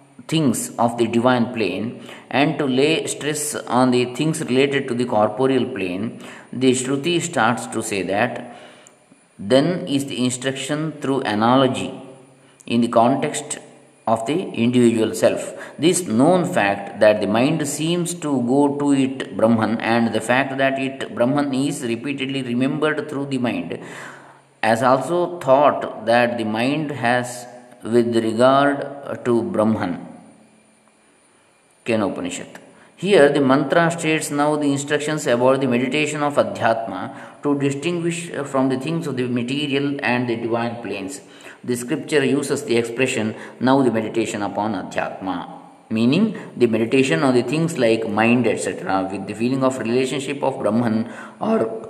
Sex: male